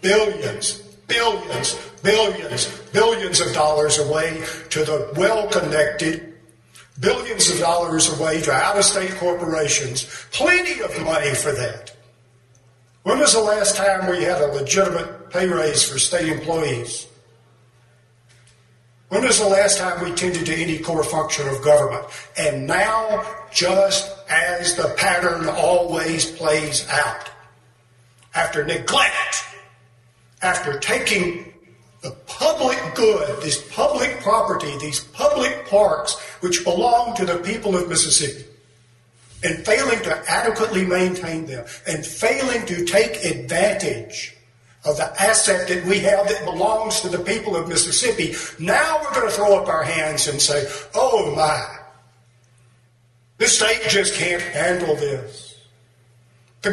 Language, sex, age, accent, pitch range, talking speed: English, male, 50-69, American, 135-195 Hz, 130 wpm